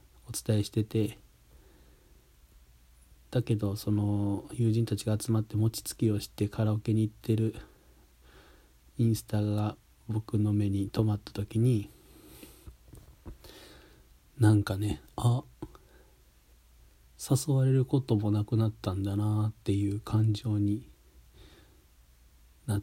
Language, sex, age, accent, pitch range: Japanese, male, 40-59, native, 95-110 Hz